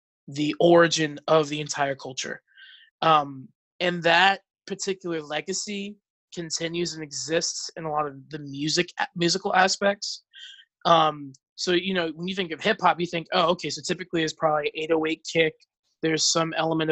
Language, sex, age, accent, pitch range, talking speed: English, male, 20-39, American, 155-185 Hz, 160 wpm